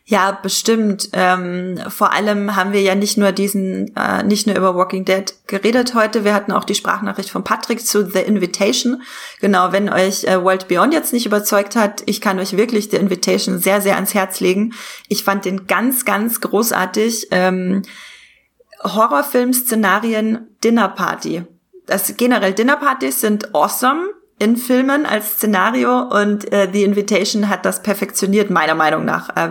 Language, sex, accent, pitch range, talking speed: German, female, German, 190-225 Hz, 160 wpm